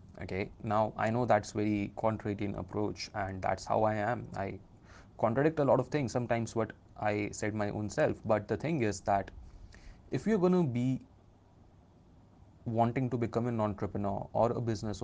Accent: native